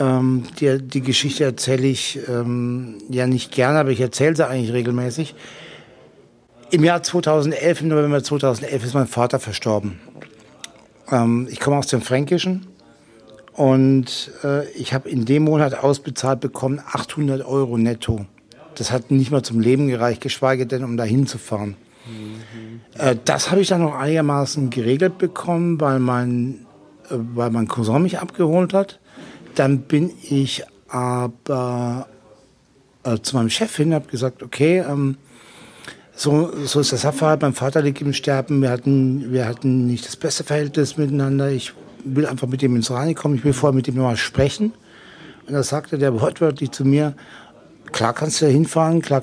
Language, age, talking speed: German, 60-79, 160 wpm